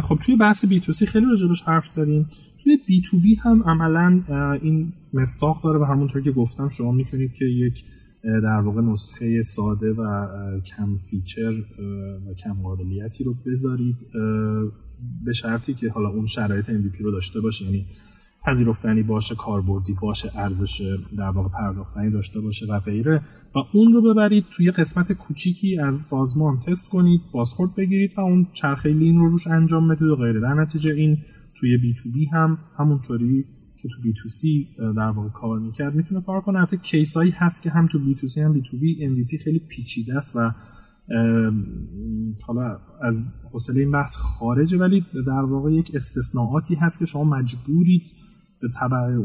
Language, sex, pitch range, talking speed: Persian, male, 110-160 Hz, 170 wpm